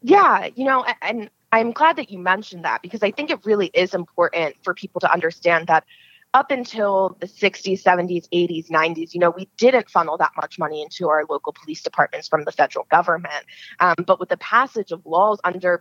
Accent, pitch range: American, 180-245 Hz